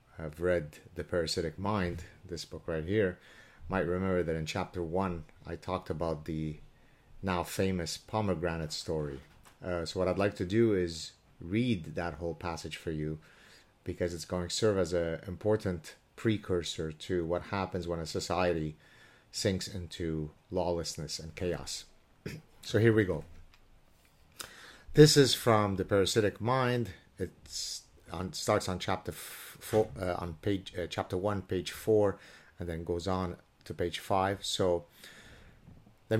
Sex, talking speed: male, 150 wpm